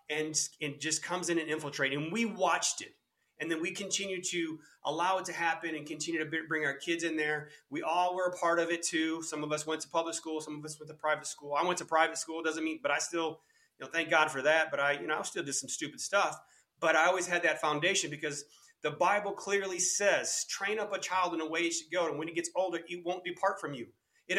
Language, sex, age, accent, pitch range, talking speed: English, male, 30-49, American, 160-195 Hz, 270 wpm